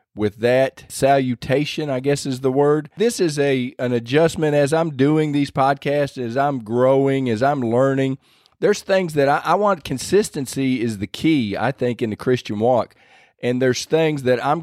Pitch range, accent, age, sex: 120-145 Hz, American, 40-59, male